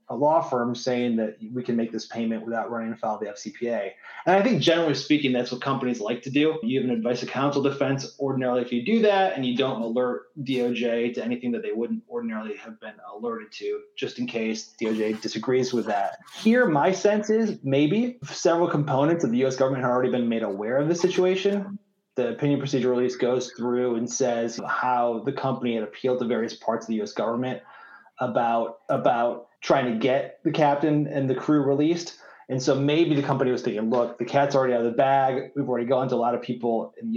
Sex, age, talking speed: male, 30-49, 220 wpm